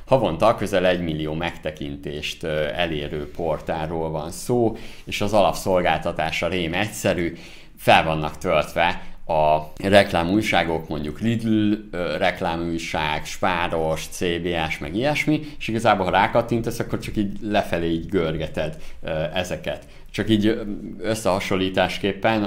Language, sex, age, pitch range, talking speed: Hungarian, male, 50-69, 80-105 Hz, 105 wpm